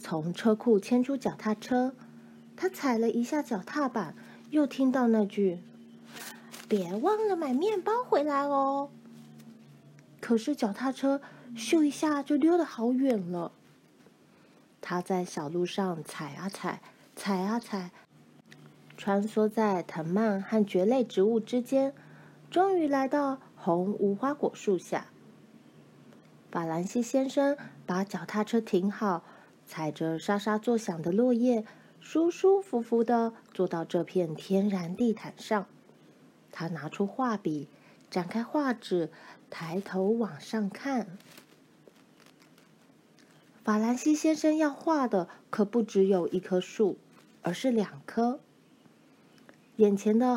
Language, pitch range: Chinese, 185-260 Hz